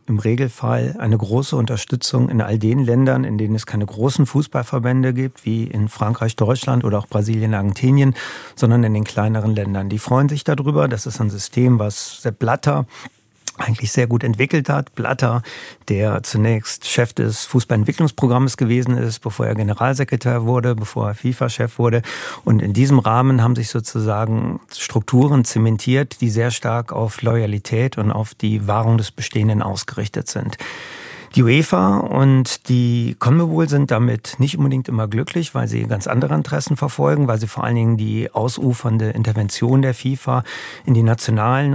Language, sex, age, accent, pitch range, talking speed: German, male, 40-59, German, 110-130 Hz, 160 wpm